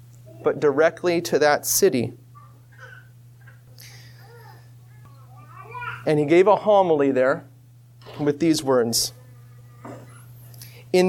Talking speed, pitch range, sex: 80 wpm, 125-200 Hz, male